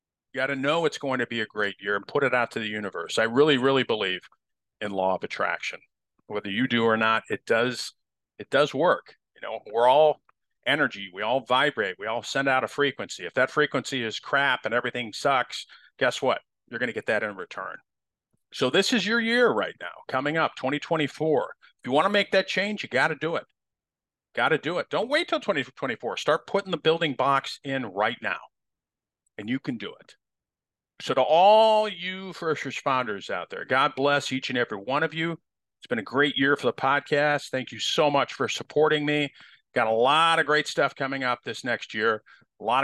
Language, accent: English, American